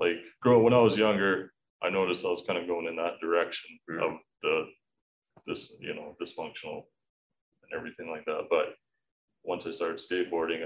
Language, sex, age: English, male, 20-39